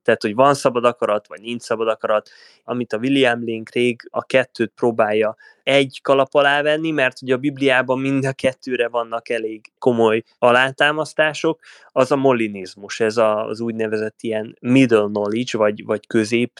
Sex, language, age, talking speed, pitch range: male, Hungarian, 20-39, 160 wpm, 120-150 Hz